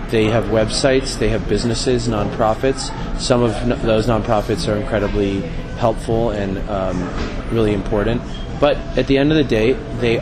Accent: American